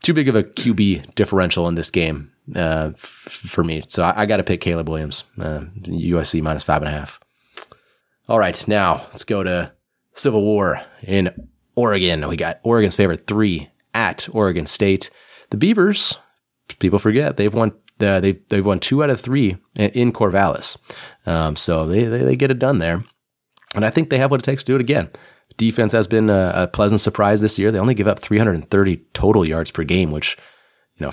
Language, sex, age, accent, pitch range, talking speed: English, male, 30-49, American, 85-105 Hz, 200 wpm